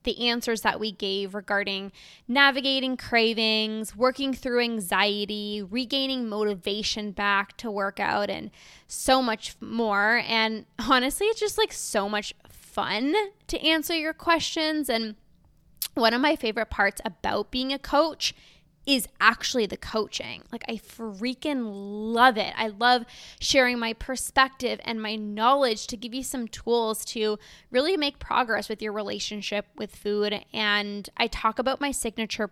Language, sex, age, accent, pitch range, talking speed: English, female, 10-29, American, 210-260 Hz, 150 wpm